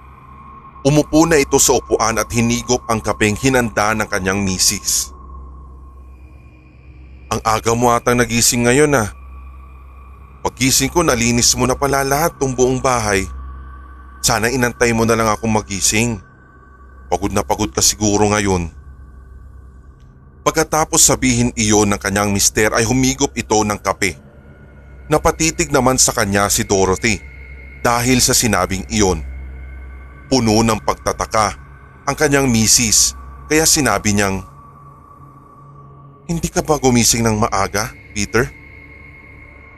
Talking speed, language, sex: 125 wpm, Filipino, male